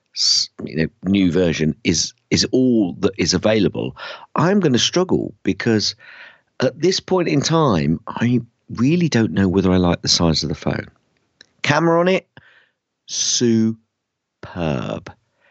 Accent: British